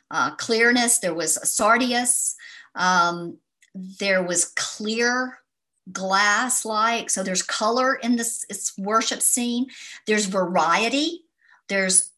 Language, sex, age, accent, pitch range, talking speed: English, male, 50-69, American, 185-245 Hz, 110 wpm